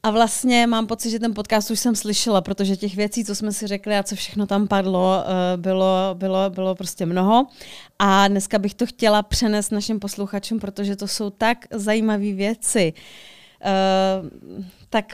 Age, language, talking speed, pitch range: 30-49, Czech, 165 wpm, 195-225 Hz